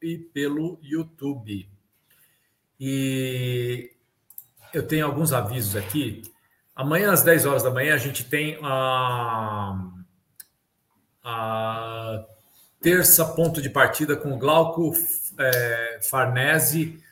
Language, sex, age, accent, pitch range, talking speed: Portuguese, male, 50-69, Brazilian, 120-155 Hz, 100 wpm